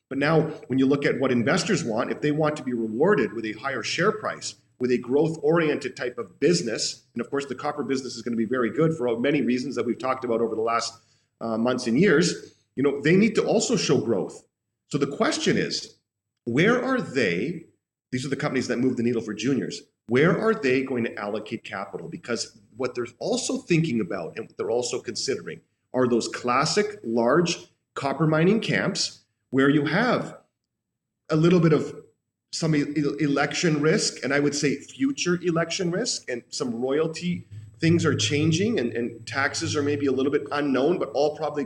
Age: 40-59